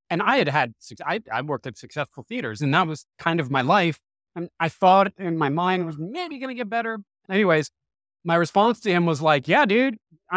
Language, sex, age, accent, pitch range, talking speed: English, male, 30-49, American, 135-170 Hz, 220 wpm